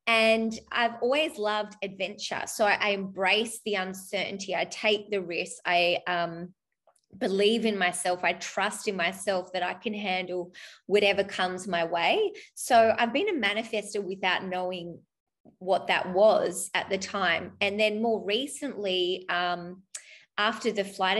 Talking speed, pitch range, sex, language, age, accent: 145 wpm, 185-220 Hz, female, English, 20-39, Australian